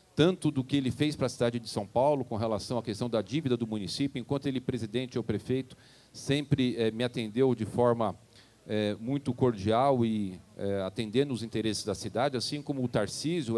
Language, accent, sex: Portuguese, Brazilian, male